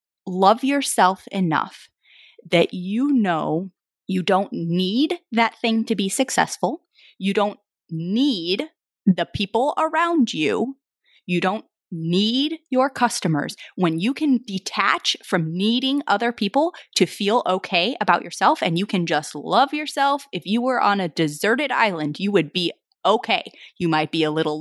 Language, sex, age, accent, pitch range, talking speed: English, female, 30-49, American, 185-260 Hz, 150 wpm